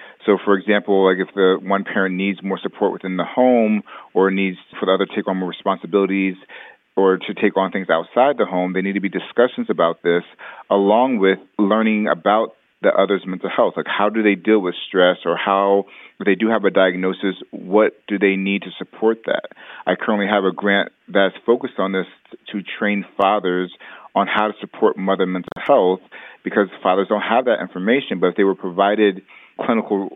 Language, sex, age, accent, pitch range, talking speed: English, male, 30-49, American, 95-105 Hz, 200 wpm